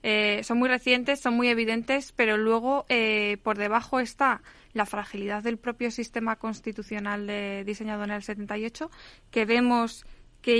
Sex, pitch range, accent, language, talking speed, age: female, 215-255 Hz, Spanish, Spanish, 155 wpm, 20-39